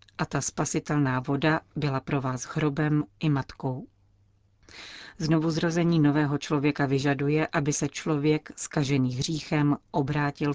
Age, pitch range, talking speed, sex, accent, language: 40-59, 135-155 Hz, 115 wpm, female, native, Czech